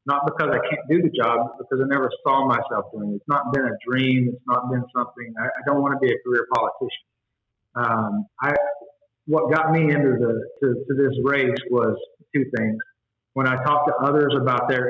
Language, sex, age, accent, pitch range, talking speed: English, male, 40-59, American, 115-135 Hz, 220 wpm